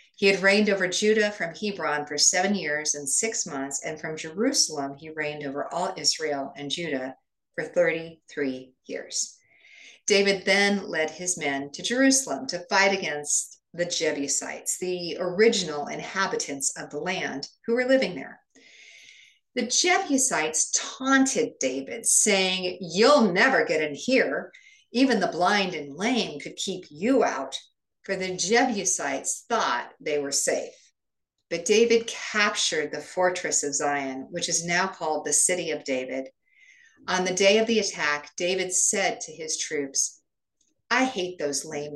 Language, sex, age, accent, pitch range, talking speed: English, female, 50-69, American, 150-215 Hz, 150 wpm